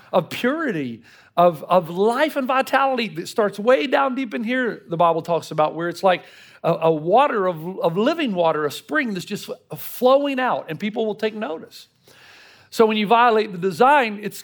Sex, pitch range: male, 190-260 Hz